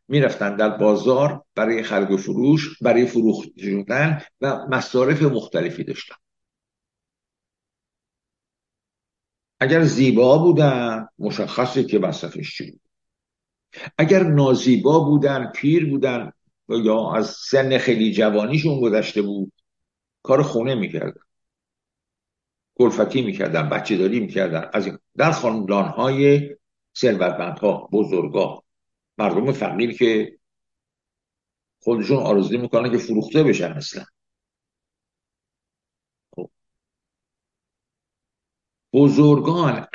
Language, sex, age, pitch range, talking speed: Persian, male, 60-79, 110-145 Hz, 80 wpm